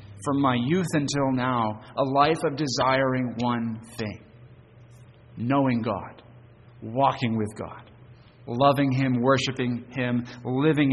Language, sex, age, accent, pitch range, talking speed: English, male, 40-59, American, 120-140 Hz, 115 wpm